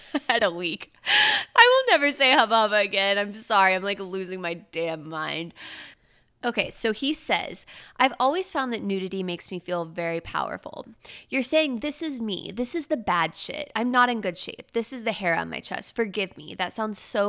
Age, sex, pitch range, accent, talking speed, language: 20-39, female, 180-245 Hz, American, 200 wpm, English